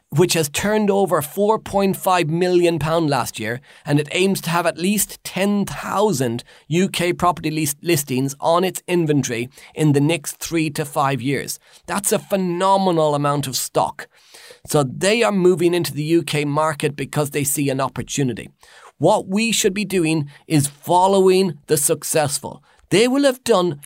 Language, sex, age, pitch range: English, male, 30-49, 145-185 Hz